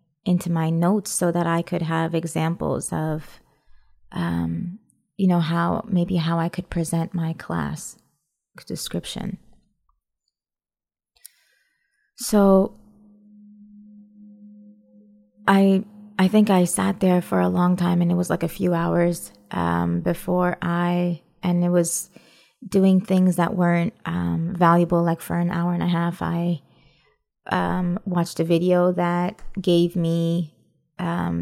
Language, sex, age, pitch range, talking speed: English, female, 20-39, 165-190 Hz, 130 wpm